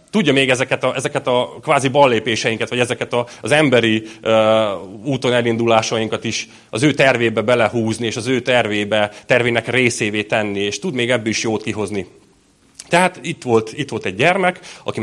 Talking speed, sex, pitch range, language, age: 170 wpm, male, 110-135 Hz, Hungarian, 30-49